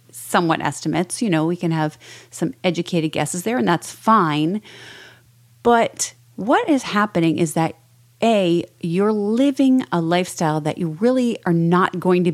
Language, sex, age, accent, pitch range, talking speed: English, female, 30-49, American, 155-200 Hz, 155 wpm